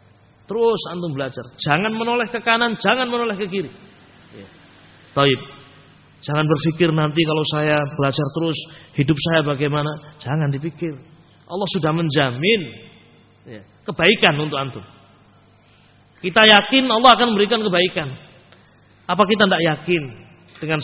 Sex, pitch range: male, 125-190 Hz